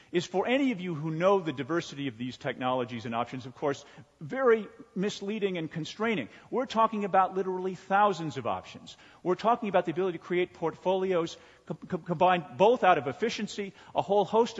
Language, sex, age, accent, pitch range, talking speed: English, male, 40-59, American, 140-195 Hz, 185 wpm